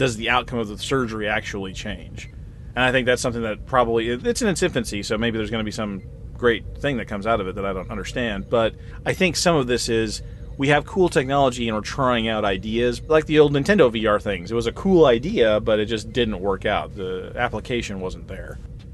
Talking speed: 235 wpm